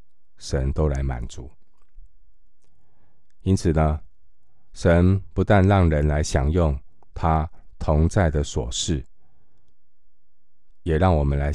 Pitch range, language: 70-90 Hz, Chinese